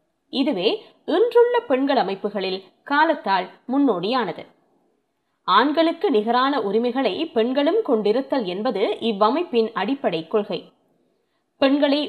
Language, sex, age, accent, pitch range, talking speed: Tamil, female, 20-39, native, 220-335 Hz, 80 wpm